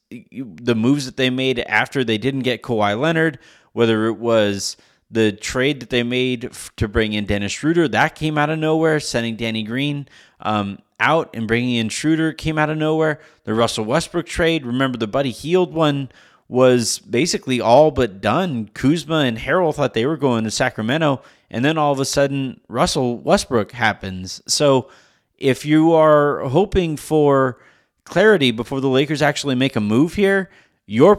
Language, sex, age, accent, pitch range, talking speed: English, male, 30-49, American, 110-145 Hz, 175 wpm